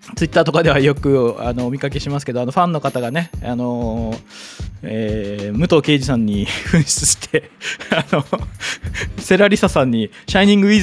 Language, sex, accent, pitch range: Japanese, male, native, 120-165 Hz